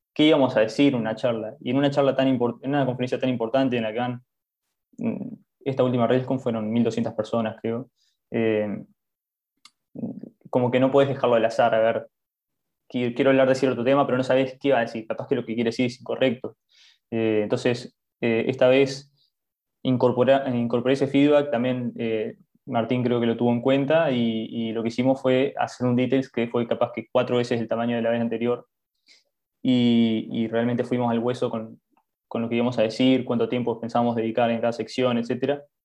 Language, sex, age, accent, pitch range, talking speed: Spanish, male, 20-39, Argentinian, 115-130 Hz, 195 wpm